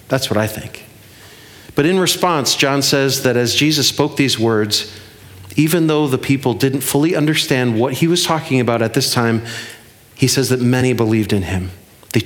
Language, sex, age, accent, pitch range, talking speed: English, male, 40-59, American, 115-145 Hz, 185 wpm